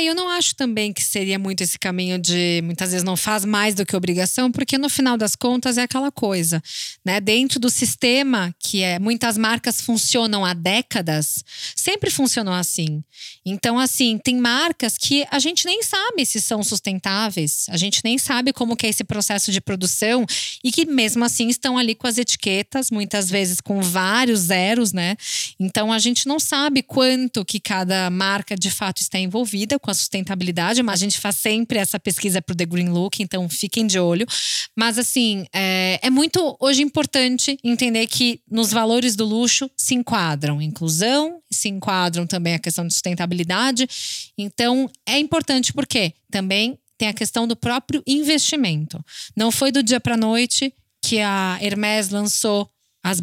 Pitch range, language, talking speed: 190-250 Hz, Portuguese, 170 wpm